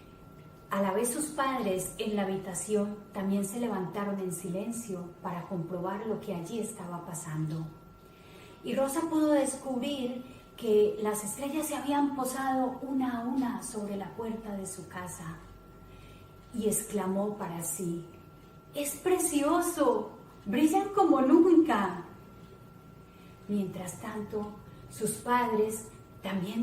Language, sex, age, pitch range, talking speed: Spanish, female, 30-49, 190-230 Hz, 120 wpm